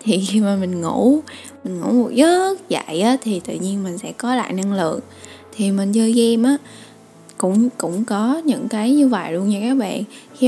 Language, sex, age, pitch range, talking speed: Vietnamese, female, 10-29, 200-250 Hz, 210 wpm